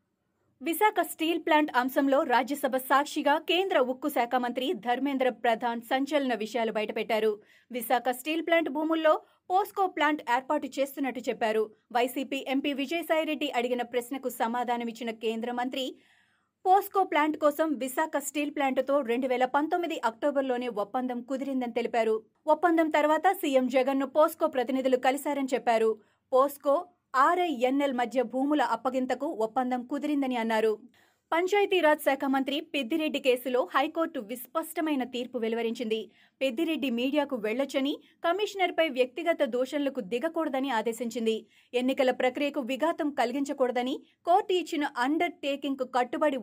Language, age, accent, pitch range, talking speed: Telugu, 30-49, native, 245-310 Hz, 100 wpm